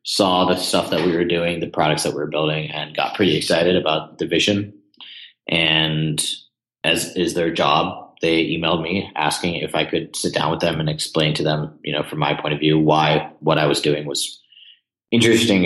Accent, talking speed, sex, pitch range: American, 205 wpm, male, 75-90 Hz